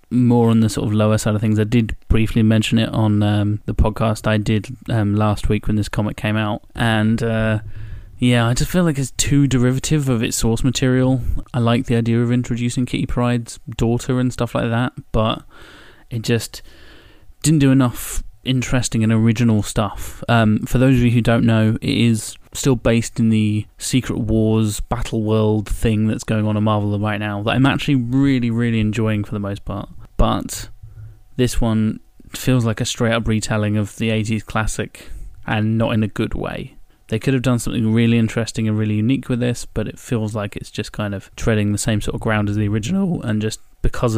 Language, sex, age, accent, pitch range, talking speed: English, male, 20-39, British, 110-120 Hz, 205 wpm